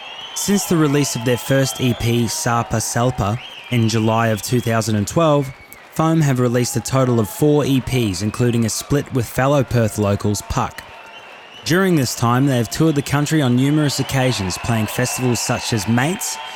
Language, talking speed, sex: English, 165 wpm, male